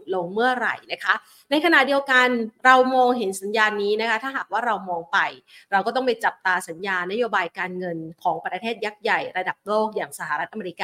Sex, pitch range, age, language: female, 200-255 Hz, 30-49, Thai